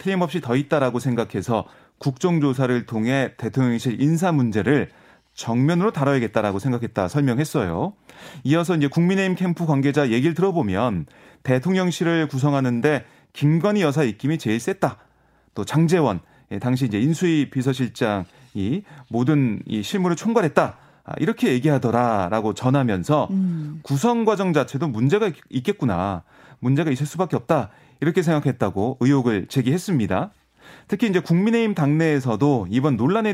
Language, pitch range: Korean, 125-170 Hz